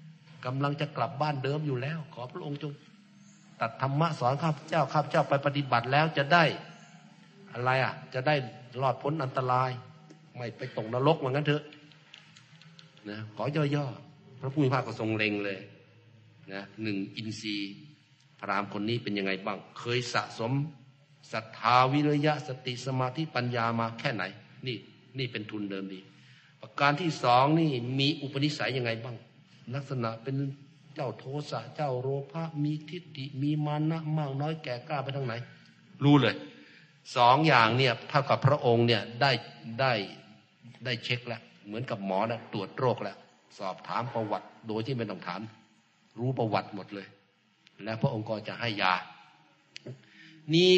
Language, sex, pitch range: Thai, male, 115-150 Hz